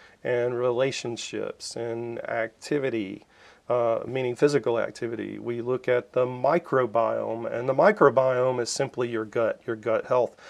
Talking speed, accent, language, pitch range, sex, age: 130 wpm, American, English, 115-130 Hz, male, 40-59